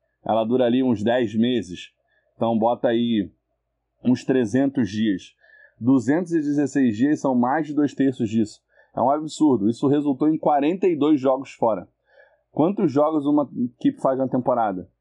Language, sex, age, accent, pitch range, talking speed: Portuguese, male, 20-39, Brazilian, 120-155 Hz, 145 wpm